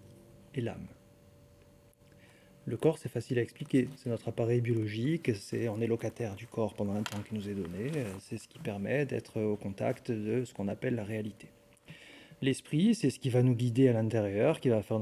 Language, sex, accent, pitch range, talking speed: French, male, French, 110-130 Hz, 200 wpm